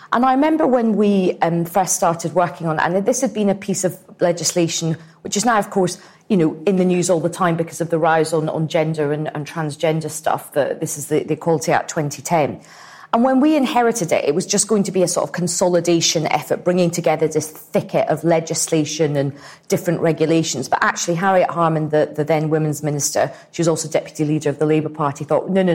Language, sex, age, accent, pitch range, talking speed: English, female, 40-59, British, 155-190 Hz, 225 wpm